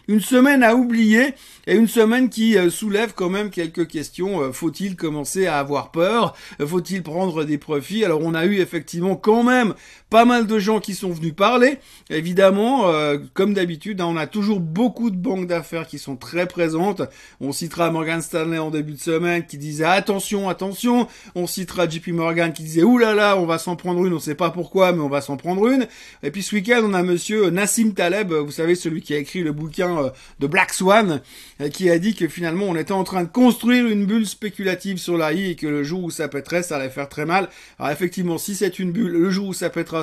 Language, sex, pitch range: French, male, 165-215 Hz